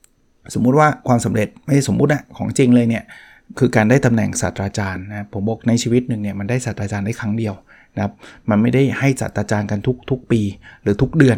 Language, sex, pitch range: Thai, male, 110-130 Hz